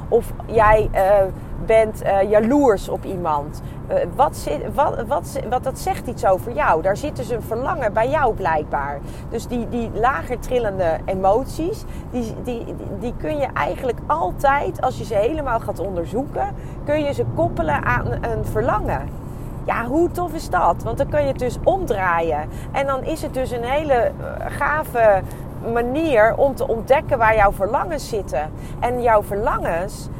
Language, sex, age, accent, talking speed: Dutch, female, 30-49, Dutch, 165 wpm